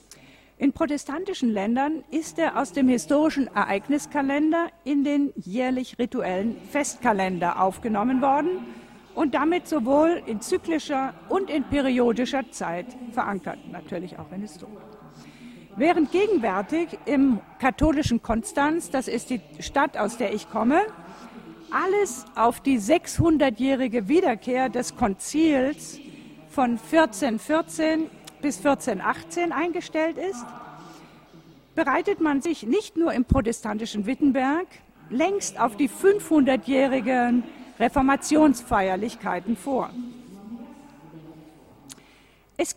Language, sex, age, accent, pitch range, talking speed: Italian, female, 50-69, German, 230-315 Hz, 100 wpm